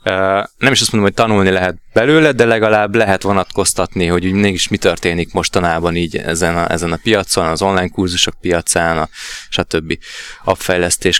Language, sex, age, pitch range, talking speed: Hungarian, male, 20-39, 90-100 Hz, 165 wpm